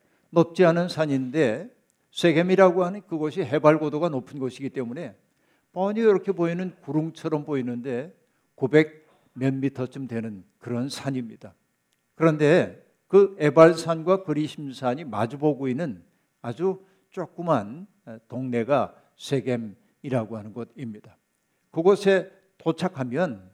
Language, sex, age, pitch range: Korean, male, 60-79, 135-175 Hz